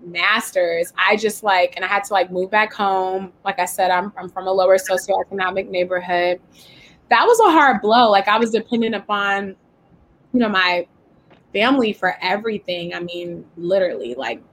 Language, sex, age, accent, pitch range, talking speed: English, female, 20-39, American, 185-215 Hz, 175 wpm